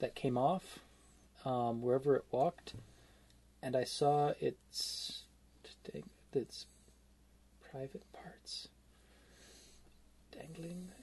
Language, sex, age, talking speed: English, male, 20-39, 80 wpm